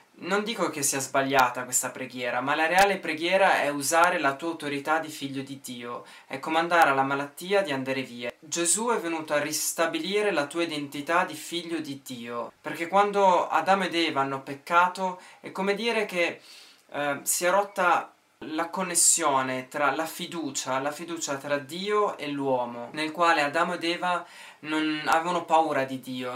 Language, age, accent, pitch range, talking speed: Italian, 20-39, native, 140-175 Hz, 170 wpm